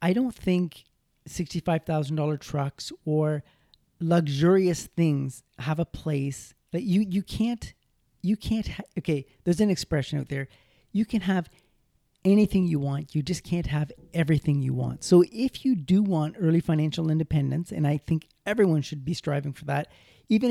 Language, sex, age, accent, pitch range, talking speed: English, male, 40-59, American, 150-180 Hz, 160 wpm